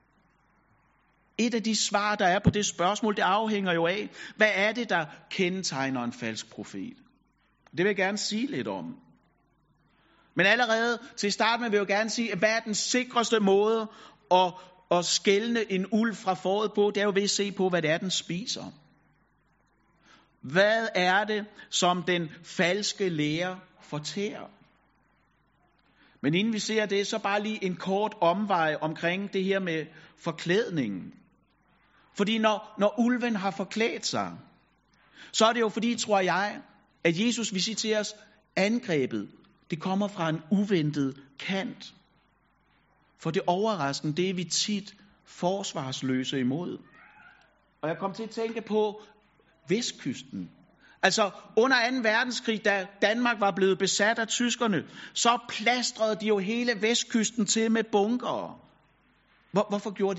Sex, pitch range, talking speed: male, 180-220 Hz, 150 wpm